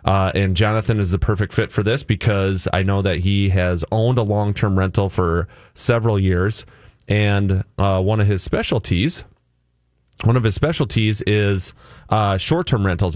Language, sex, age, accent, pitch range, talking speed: English, male, 30-49, American, 95-115 Hz, 165 wpm